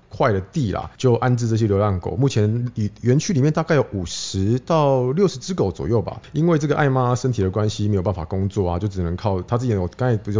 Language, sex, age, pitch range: Chinese, male, 20-39, 90-120 Hz